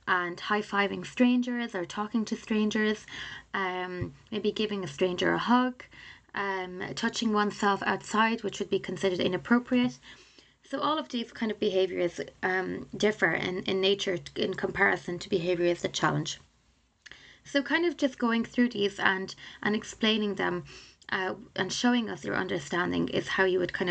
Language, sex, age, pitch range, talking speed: English, female, 20-39, 185-250 Hz, 160 wpm